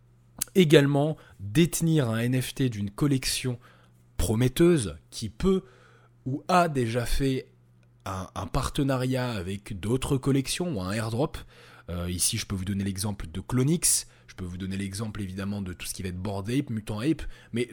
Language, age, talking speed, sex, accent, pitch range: French, 20-39, 160 wpm, male, French, 95-135 Hz